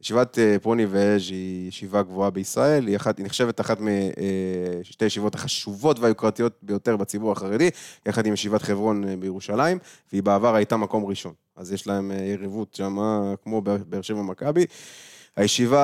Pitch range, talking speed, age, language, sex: 95-115 Hz, 150 wpm, 20-39, Hebrew, male